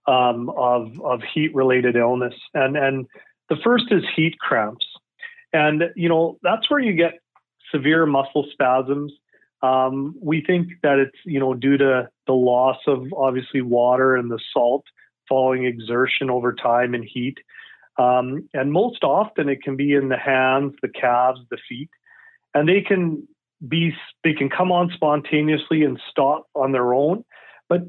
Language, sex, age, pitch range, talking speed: English, male, 40-59, 125-155 Hz, 160 wpm